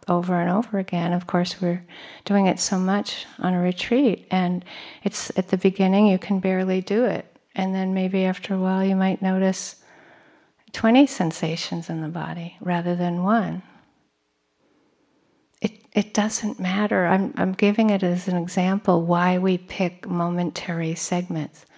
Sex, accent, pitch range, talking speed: female, American, 175-200 Hz, 155 wpm